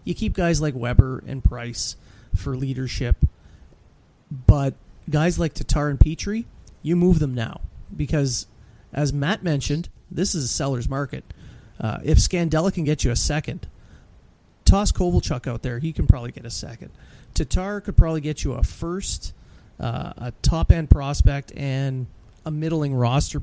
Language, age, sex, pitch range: English, 30-49, male, 125-155 Hz